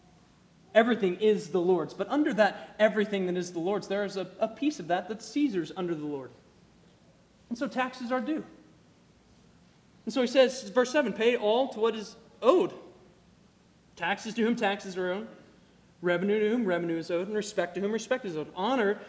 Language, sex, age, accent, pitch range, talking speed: English, male, 30-49, American, 190-255 Hz, 190 wpm